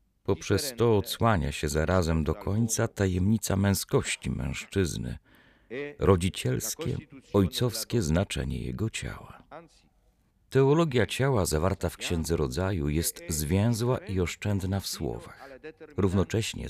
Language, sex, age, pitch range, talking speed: Polish, male, 40-59, 85-115 Hz, 100 wpm